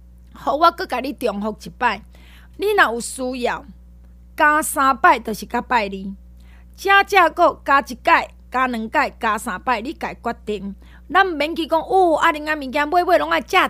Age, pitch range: 20-39, 230-315 Hz